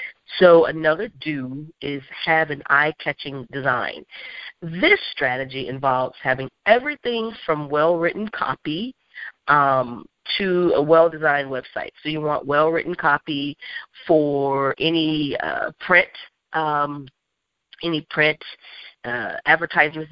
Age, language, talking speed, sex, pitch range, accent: 40-59, English, 105 wpm, female, 140-175 Hz, American